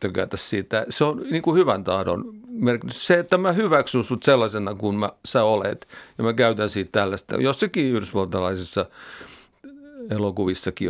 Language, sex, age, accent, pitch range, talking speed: Finnish, male, 50-69, native, 105-140 Hz, 130 wpm